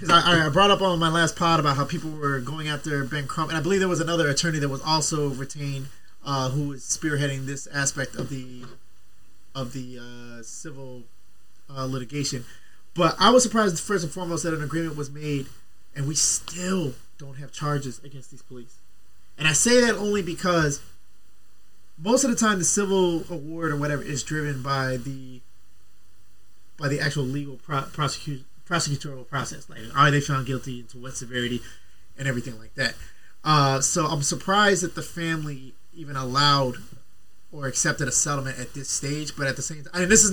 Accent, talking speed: American, 185 wpm